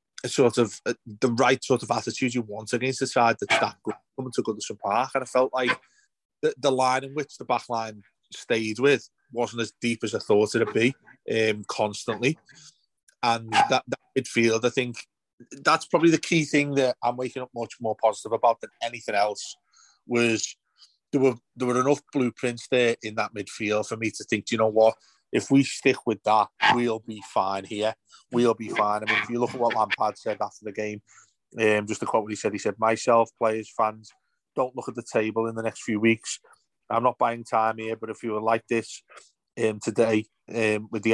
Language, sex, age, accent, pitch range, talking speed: English, male, 30-49, British, 110-130 Hz, 215 wpm